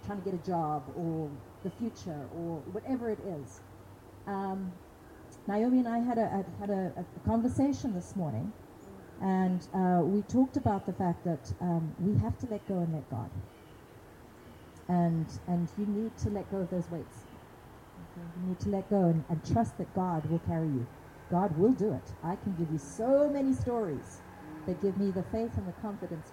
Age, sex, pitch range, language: 40-59, female, 145-205 Hz, English